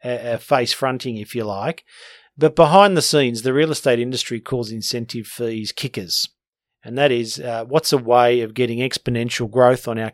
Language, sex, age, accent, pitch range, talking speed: English, male, 40-59, Australian, 120-145 Hz, 180 wpm